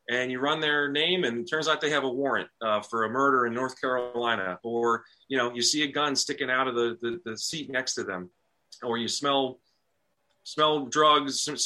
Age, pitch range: 30-49, 115-155 Hz